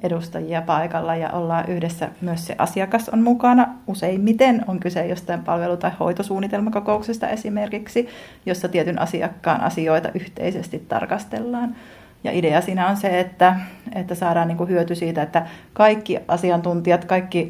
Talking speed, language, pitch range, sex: 130 wpm, Finnish, 170-215 Hz, female